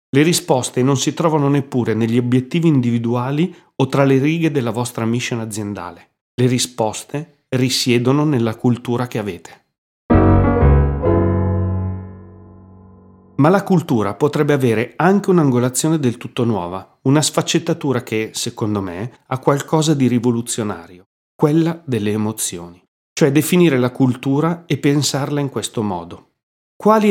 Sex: male